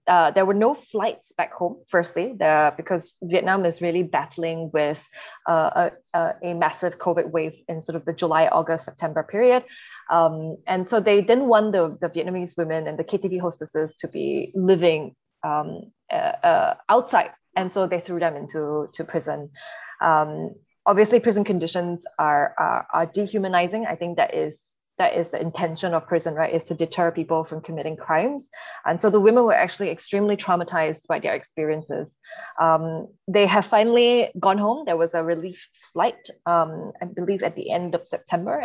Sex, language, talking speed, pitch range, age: female, English, 175 wpm, 165-205 Hz, 20-39